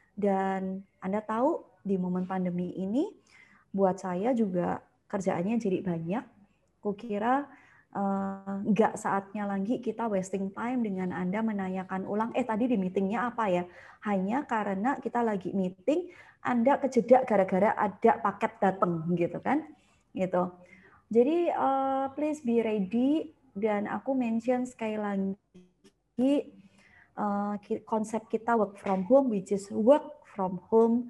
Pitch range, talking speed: 190-245 Hz, 125 wpm